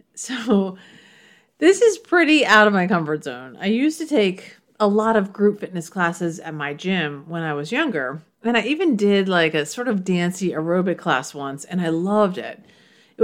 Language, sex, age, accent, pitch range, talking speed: English, female, 40-59, American, 160-220 Hz, 195 wpm